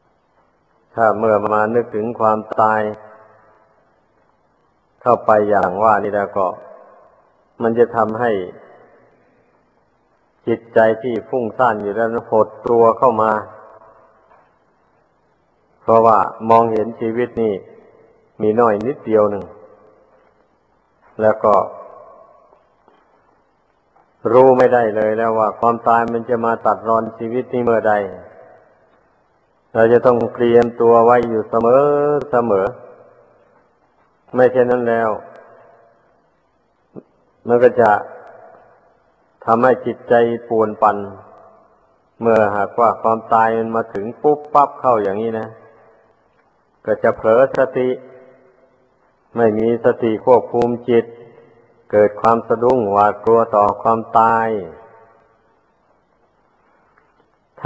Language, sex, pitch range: Thai, male, 110-120 Hz